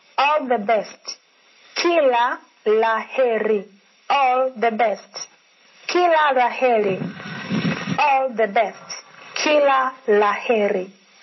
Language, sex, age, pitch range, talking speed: English, female, 30-49, 205-250 Hz, 80 wpm